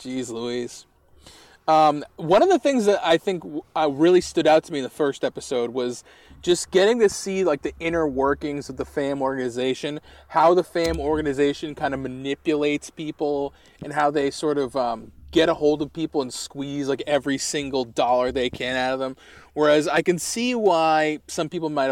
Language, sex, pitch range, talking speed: English, male, 125-155 Hz, 195 wpm